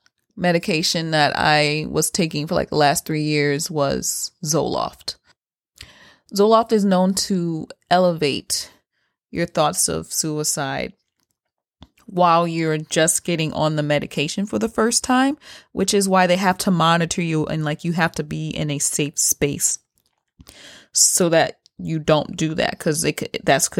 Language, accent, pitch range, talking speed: English, American, 155-185 Hz, 150 wpm